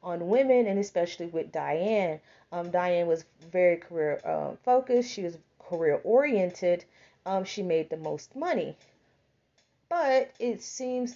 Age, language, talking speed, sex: 30-49, English, 140 wpm, female